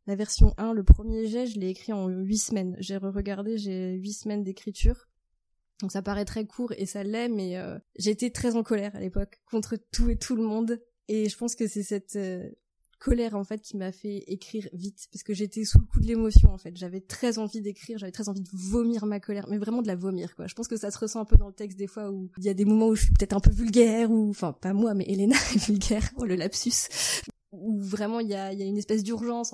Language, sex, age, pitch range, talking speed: French, female, 20-39, 195-225 Hz, 260 wpm